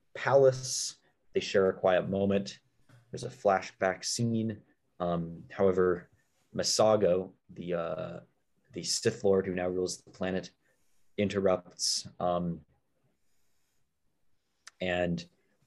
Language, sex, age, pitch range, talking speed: English, male, 20-39, 85-100 Hz, 95 wpm